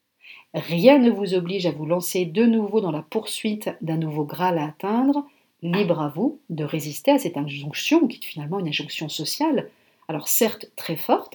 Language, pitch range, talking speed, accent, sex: French, 160-225 Hz, 185 wpm, French, female